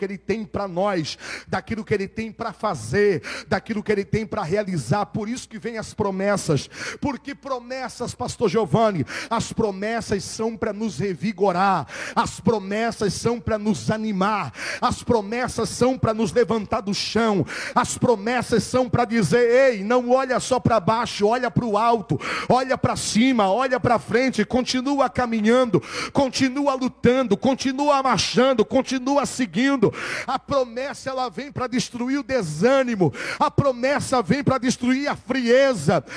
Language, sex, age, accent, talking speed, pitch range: Portuguese, male, 40-59, Brazilian, 150 wpm, 220-305 Hz